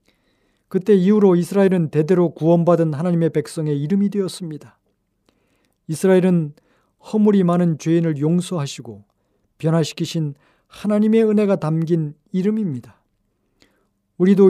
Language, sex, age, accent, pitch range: Korean, male, 40-59, native, 150-190 Hz